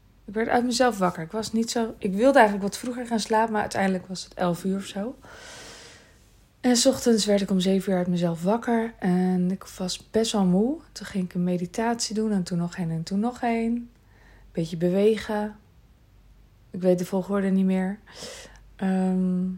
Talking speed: 195 wpm